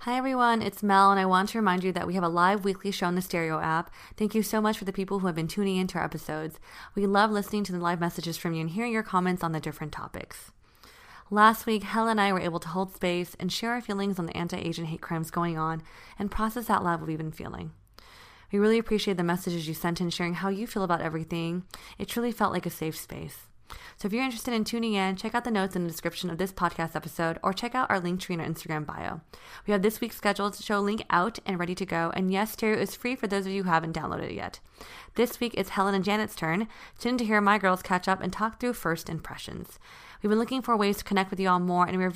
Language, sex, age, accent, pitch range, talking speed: English, female, 20-39, American, 170-210 Hz, 270 wpm